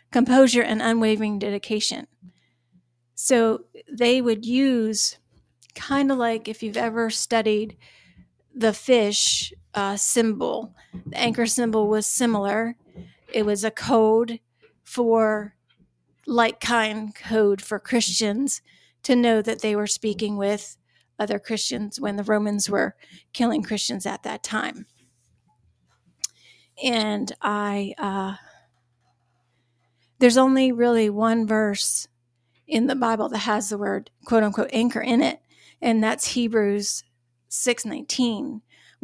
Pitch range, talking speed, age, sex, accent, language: 205-240 Hz, 115 wpm, 40-59, female, American, English